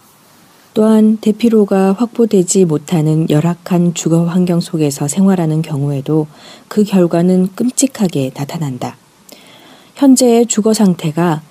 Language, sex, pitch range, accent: Korean, female, 160-210 Hz, native